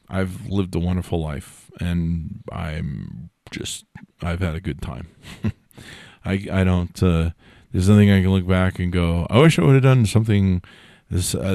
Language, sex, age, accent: English, male, 40-59, American